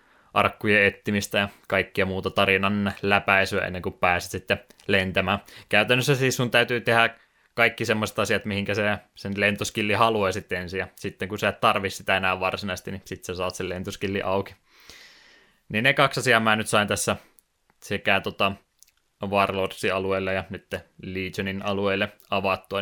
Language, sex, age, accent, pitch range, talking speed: Finnish, male, 20-39, native, 95-115 Hz, 155 wpm